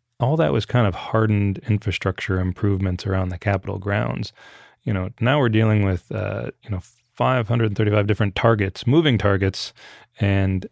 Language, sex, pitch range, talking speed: English, male, 100-115 Hz, 150 wpm